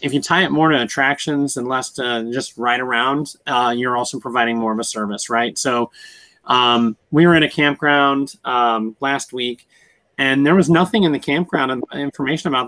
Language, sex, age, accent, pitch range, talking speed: English, male, 30-49, American, 120-155 Hz, 195 wpm